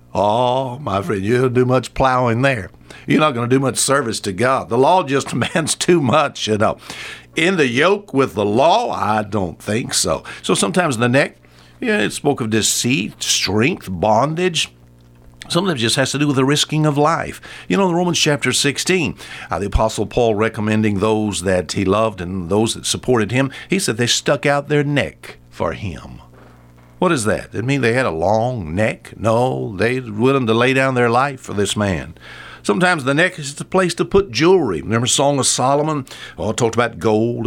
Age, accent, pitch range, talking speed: 60-79, American, 100-135 Hz, 205 wpm